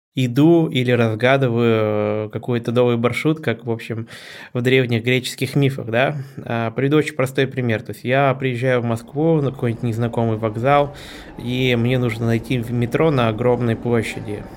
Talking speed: 150 wpm